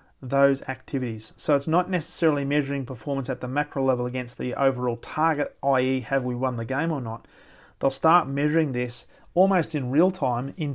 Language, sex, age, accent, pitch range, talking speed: English, male, 30-49, Australian, 130-150 Hz, 185 wpm